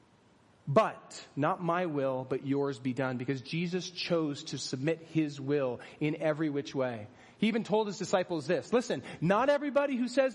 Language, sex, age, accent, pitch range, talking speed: English, male, 30-49, American, 160-220 Hz, 175 wpm